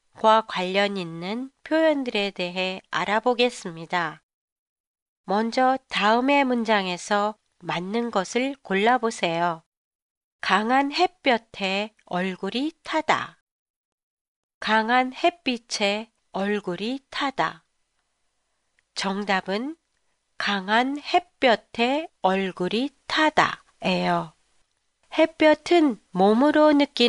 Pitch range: 195-290 Hz